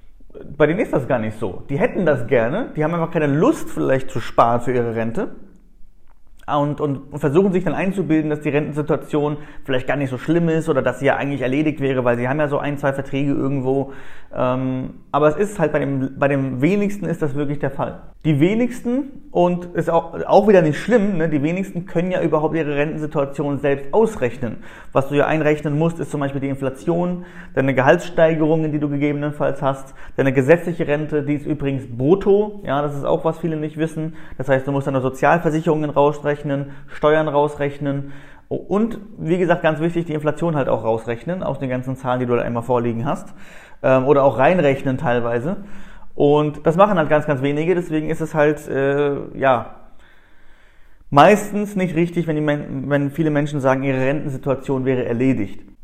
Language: German